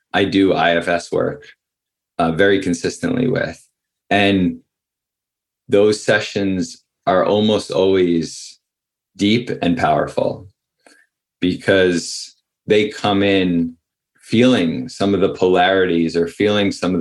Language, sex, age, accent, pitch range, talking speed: English, male, 20-39, American, 85-100 Hz, 105 wpm